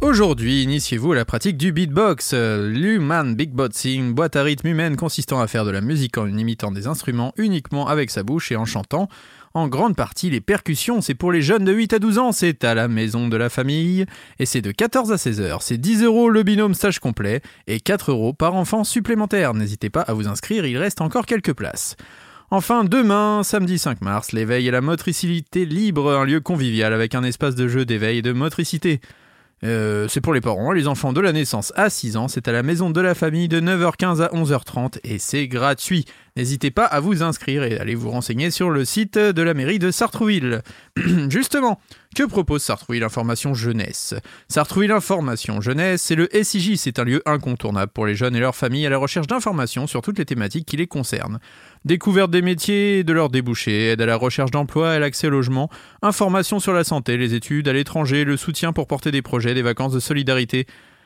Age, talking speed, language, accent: 30-49, 215 wpm, French, French